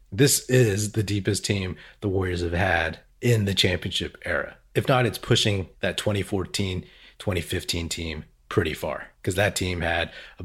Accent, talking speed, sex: American, 160 wpm, male